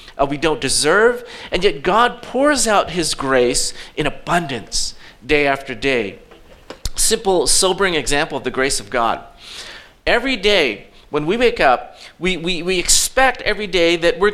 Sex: male